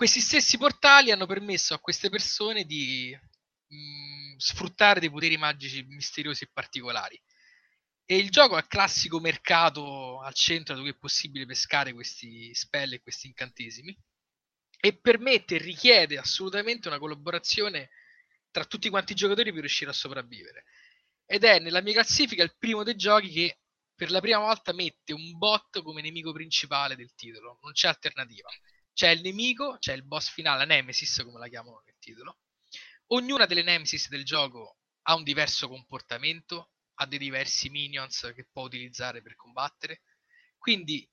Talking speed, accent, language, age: 160 wpm, native, Italian, 20-39